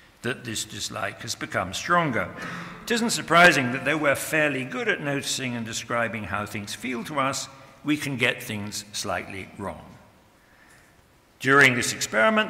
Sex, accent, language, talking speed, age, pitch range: male, British, English, 155 wpm, 60-79, 110-145 Hz